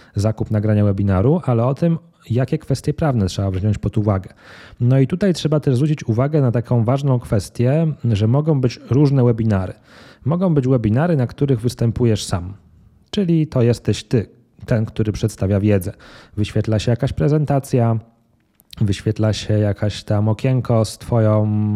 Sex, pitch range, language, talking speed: male, 105-130 Hz, Polish, 150 wpm